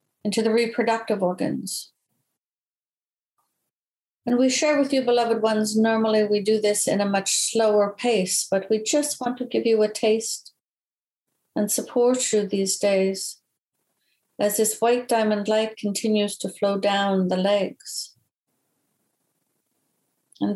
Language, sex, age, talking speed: English, female, 60-79, 135 wpm